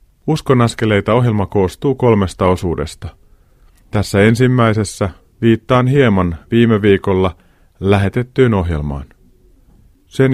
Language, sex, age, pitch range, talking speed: Finnish, male, 30-49, 90-120 Hz, 75 wpm